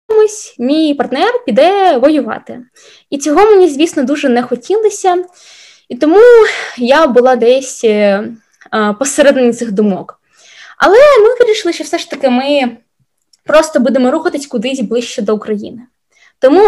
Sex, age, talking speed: female, 20-39, 130 wpm